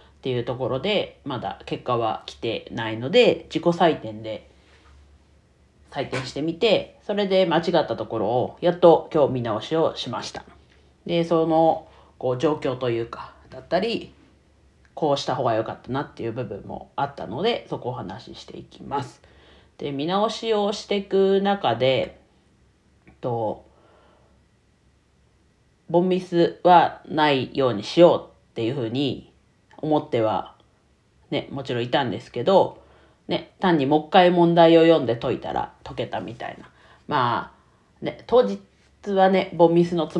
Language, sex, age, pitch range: Japanese, female, 40-59, 115-170 Hz